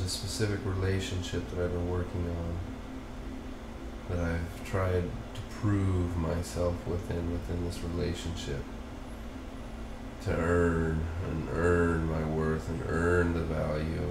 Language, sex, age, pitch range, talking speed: English, male, 30-49, 85-125 Hz, 120 wpm